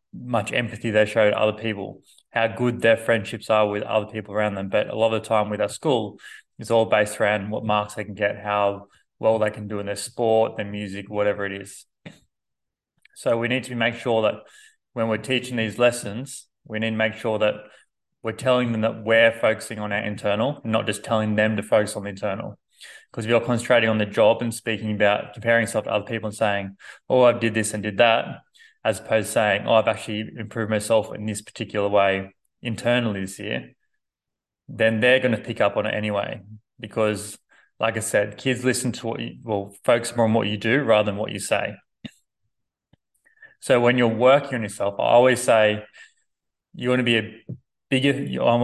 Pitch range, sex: 105-115 Hz, male